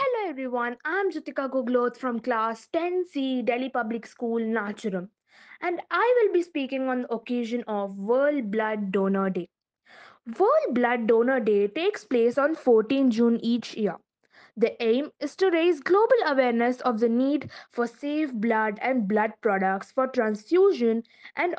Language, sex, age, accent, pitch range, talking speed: English, female, 20-39, Indian, 225-285 Hz, 155 wpm